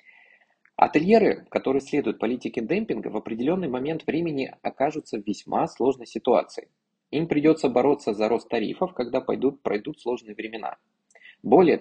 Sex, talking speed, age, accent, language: male, 125 wpm, 20-39, native, Russian